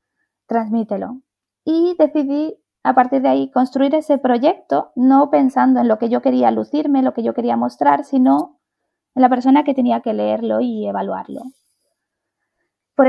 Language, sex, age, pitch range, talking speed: Spanish, female, 20-39, 215-270 Hz, 155 wpm